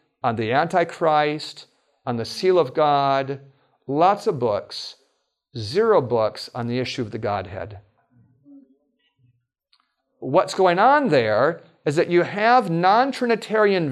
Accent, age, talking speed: American, 40-59, 120 wpm